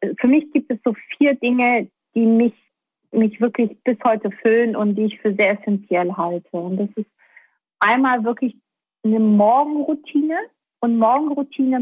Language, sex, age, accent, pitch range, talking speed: German, female, 50-69, German, 210-255 Hz, 150 wpm